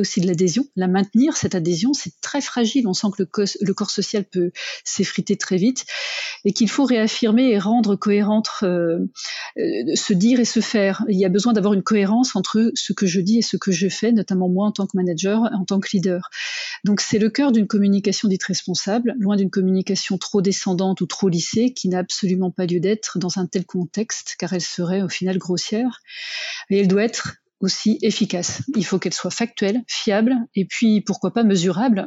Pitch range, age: 185-225 Hz, 40-59